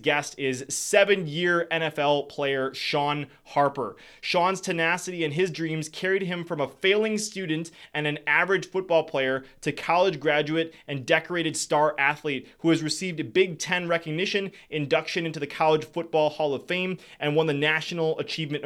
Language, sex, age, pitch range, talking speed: English, male, 20-39, 150-180 Hz, 160 wpm